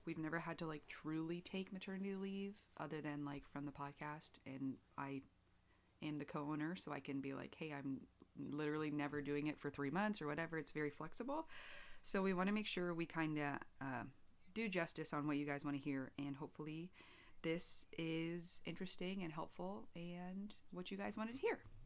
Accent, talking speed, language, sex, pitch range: American, 195 wpm, English, female, 145-180 Hz